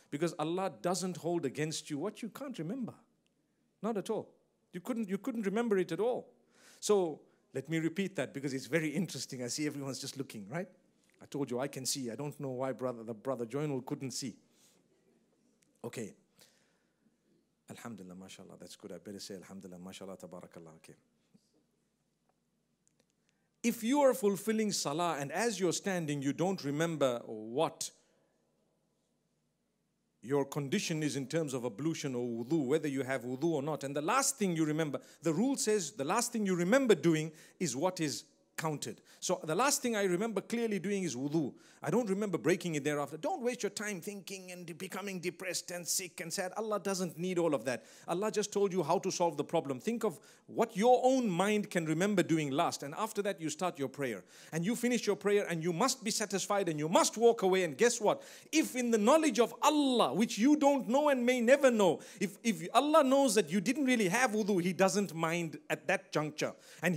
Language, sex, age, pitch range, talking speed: English, male, 50-69, 150-215 Hz, 195 wpm